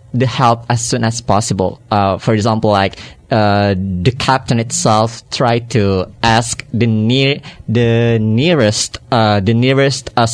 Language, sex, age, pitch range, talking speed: Indonesian, male, 20-39, 105-125 Hz, 145 wpm